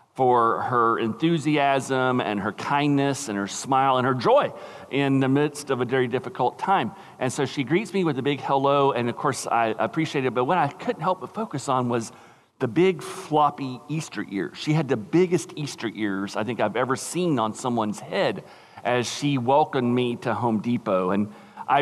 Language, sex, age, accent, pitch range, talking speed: English, male, 40-59, American, 125-160 Hz, 200 wpm